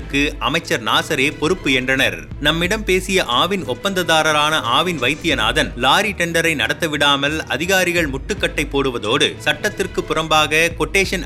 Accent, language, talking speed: native, Tamil, 100 wpm